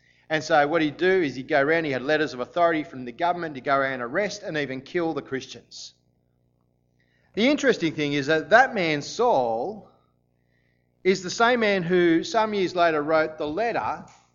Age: 40-59